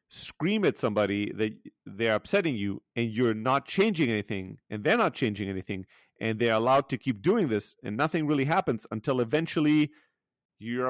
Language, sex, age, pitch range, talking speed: English, male, 40-59, 110-165 Hz, 170 wpm